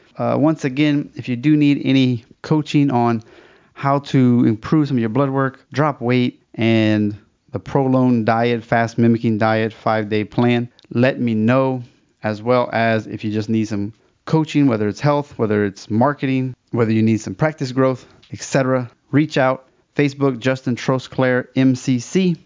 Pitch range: 115-145 Hz